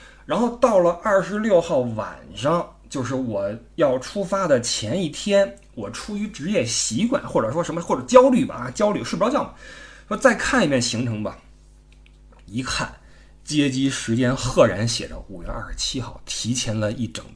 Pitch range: 115-155 Hz